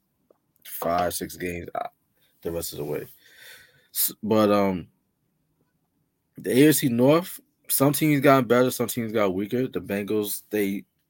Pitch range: 95-130 Hz